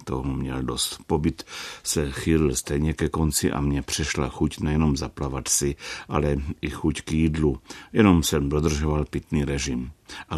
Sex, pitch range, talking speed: male, 75-95 Hz, 155 wpm